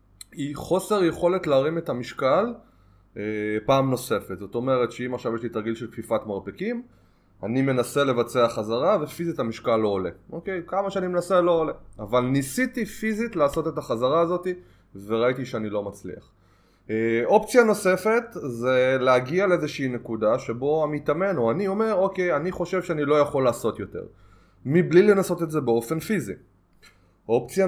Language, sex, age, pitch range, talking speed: Hebrew, male, 20-39, 110-165 Hz, 155 wpm